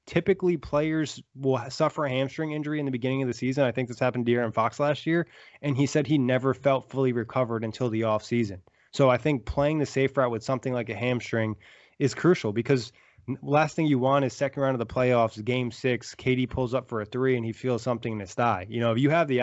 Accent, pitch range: American, 120-145 Hz